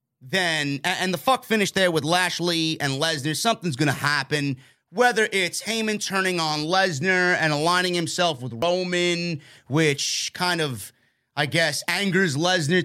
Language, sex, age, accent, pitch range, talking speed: English, male, 30-49, American, 140-180 Hz, 150 wpm